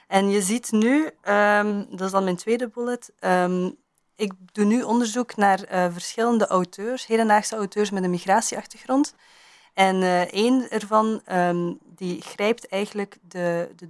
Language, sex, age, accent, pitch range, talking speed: Dutch, female, 20-39, Dutch, 180-220 Hz, 140 wpm